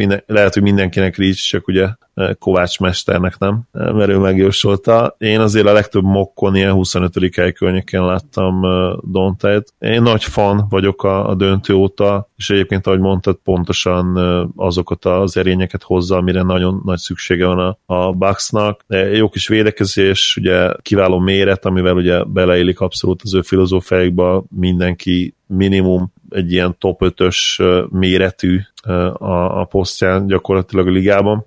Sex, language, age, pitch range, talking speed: male, Hungarian, 30-49, 90-100 Hz, 140 wpm